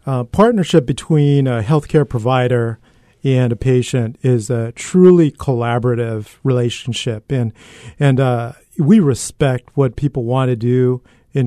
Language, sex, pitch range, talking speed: English, male, 120-145 Hz, 130 wpm